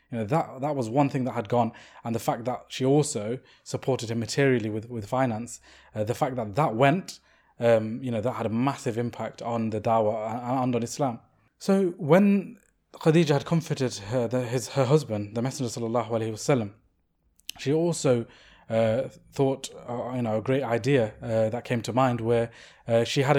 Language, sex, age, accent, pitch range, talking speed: English, male, 20-39, British, 115-140 Hz, 195 wpm